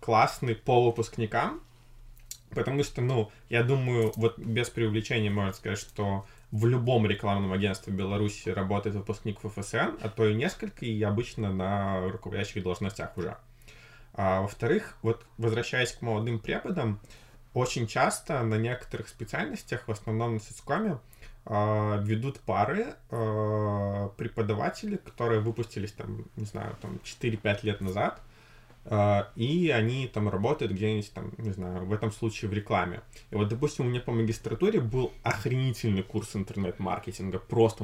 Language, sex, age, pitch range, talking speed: Russian, male, 20-39, 105-120 Hz, 135 wpm